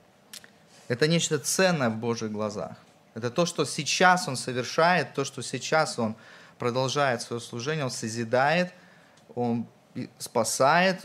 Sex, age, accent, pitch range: male, 20-39, native, 115-155 Hz